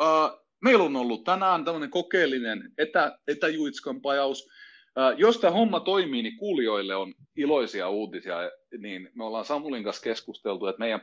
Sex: male